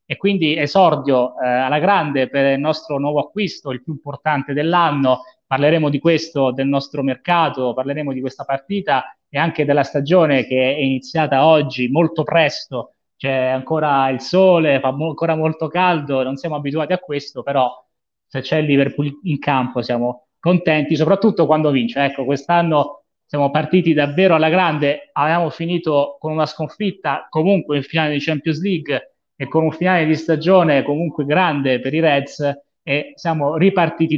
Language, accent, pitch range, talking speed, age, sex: Italian, native, 135-165 Hz, 160 wpm, 30-49, male